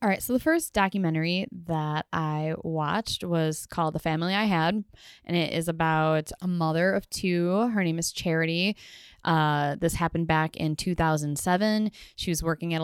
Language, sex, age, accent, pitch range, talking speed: English, female, 10-29, American, 160-195 Hz, 175 wpm